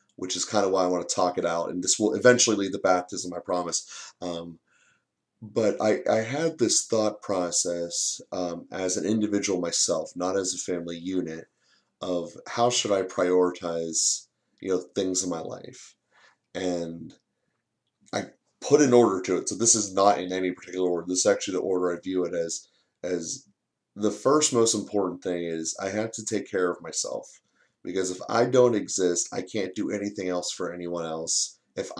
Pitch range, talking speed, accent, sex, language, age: 85-100 Hz, 190 wpm, American, male, English, 30-49